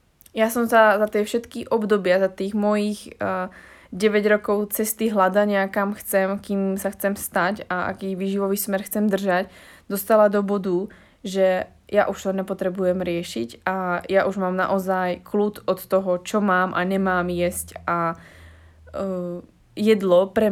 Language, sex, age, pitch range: Slovak, female, 20-39, 185-205 Hz